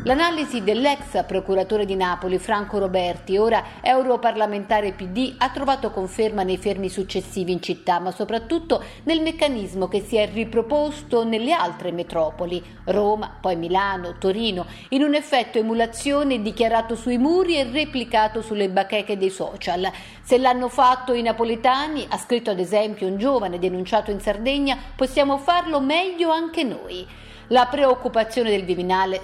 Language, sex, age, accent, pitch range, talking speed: Italian, female, 50-69, native, 195-250 Hz, 140 wpm